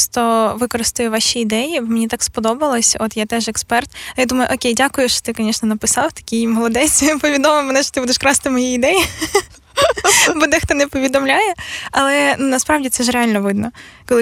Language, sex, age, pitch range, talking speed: Ukrainian, female, 20-39, 225-265 Hz, 175 wpm